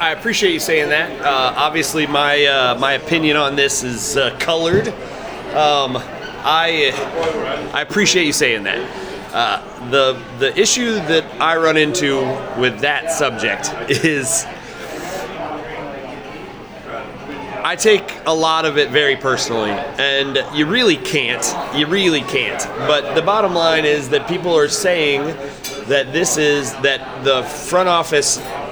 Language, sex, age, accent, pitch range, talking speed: English, male, 30-49, American, 135-160 Hz, 140 wpm